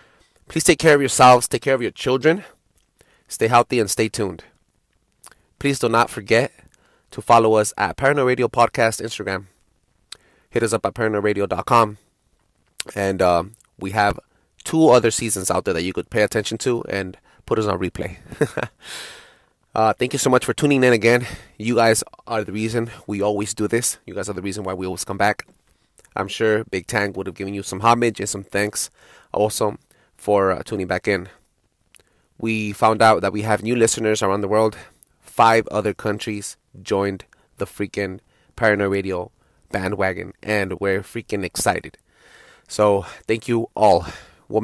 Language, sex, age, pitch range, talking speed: English, male, 20-39, 100-115 Hz, 170 wpm